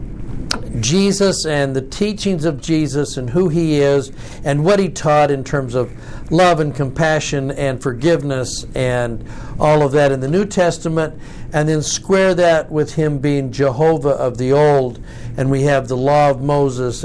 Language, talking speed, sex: English, 170 wpm, male